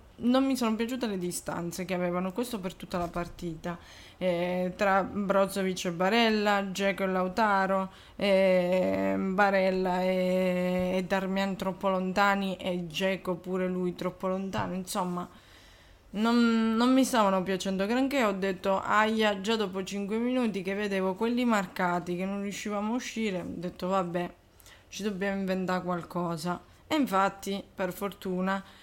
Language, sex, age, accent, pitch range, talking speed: Italian, female, 20-39, native, 180-205 Hz, 140 wpm